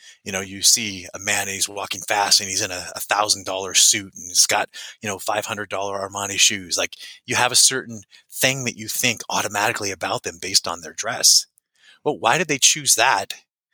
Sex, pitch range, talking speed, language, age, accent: male, 100-130 Hz, 215 wpm, English, 30-49, American